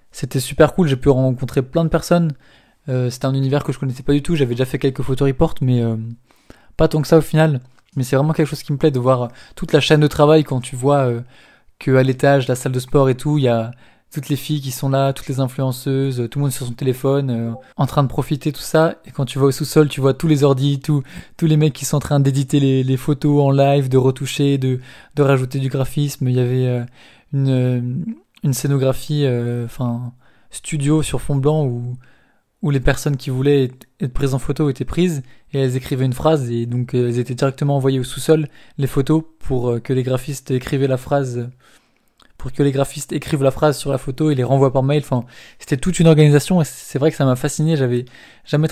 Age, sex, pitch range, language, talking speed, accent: 20-39, male, 130-150 Hz, French, 245 wpm, French